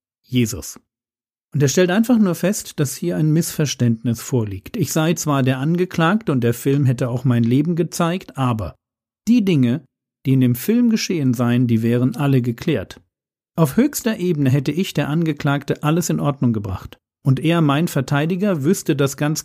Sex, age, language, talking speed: male, 50-69, German, 175 wpm